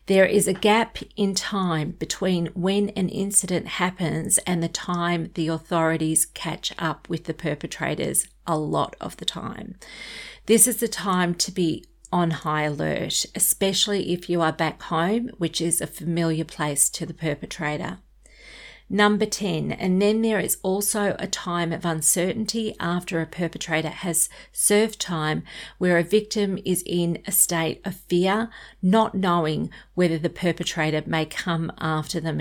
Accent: Australian